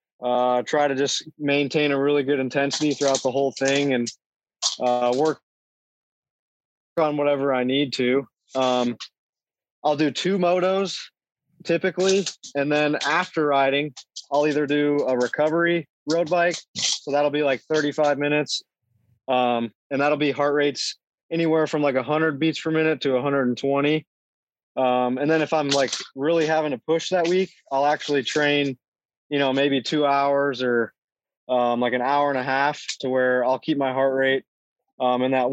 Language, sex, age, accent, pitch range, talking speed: English, male, 20-39, American, 130-150 Hz, 165 wpm